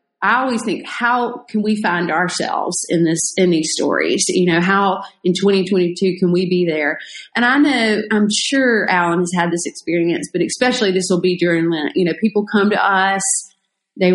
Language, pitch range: English, 180-240 Hz